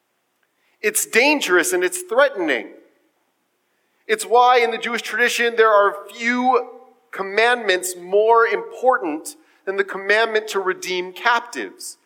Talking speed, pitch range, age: 115 wpm, 185-290 Hz, 40-59